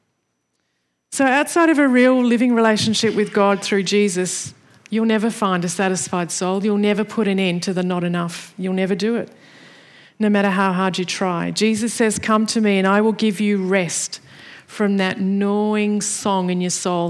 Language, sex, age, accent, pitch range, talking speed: English, female, 40-59, Australian, 185-220 Hz, 190 wpm